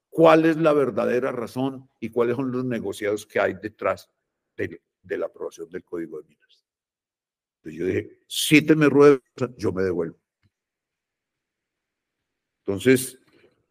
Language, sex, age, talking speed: Spanish, male, 50-69, 145 wpm